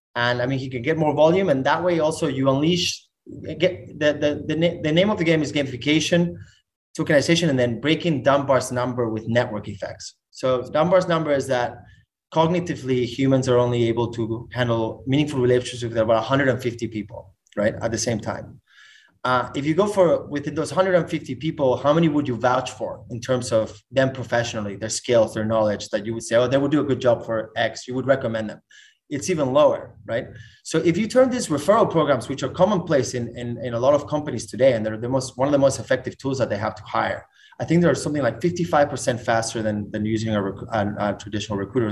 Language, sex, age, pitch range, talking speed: English, male, 20-39, 115-150 Hz, 215 wpm